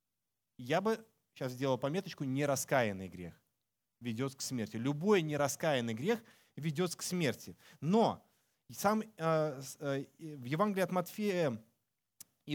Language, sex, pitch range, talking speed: Russian, male, 120-160 Hz, 115 wpm